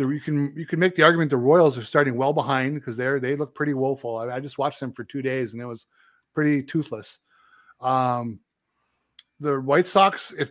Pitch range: 130-165 Hz